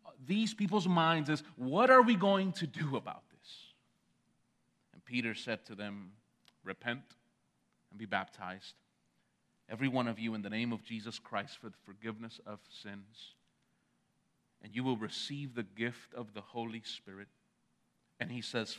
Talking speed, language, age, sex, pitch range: 155 wpm, English, 30-49, male, 115-150 Hz